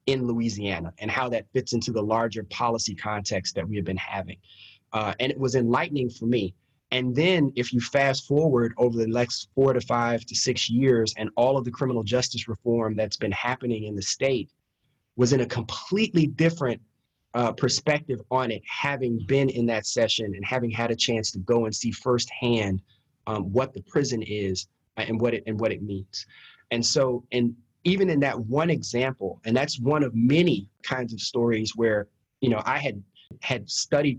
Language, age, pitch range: English, 30-49, 110-130 Hz